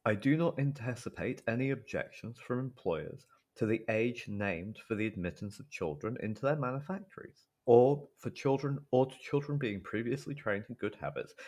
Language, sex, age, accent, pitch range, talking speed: English, male, 30-49, British, 110-140 Hz, 165 wpm